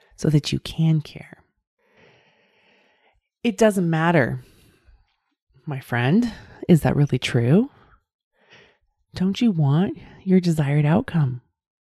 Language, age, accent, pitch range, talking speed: English, 30-49, American, 140-205 Hz, 100 wpm